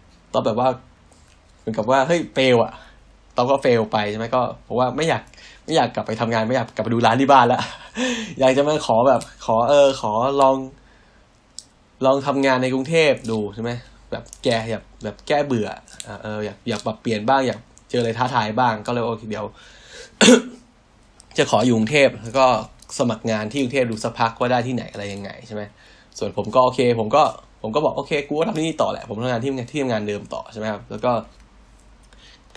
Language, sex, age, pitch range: Thai, male, 10-29, 110-130 Hz